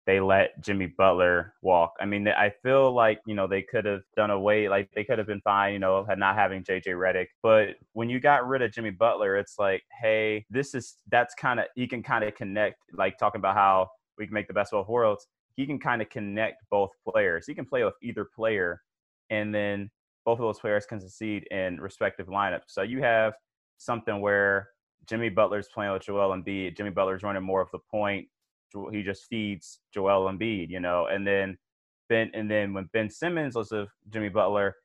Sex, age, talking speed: male, 20-39, 215 wpm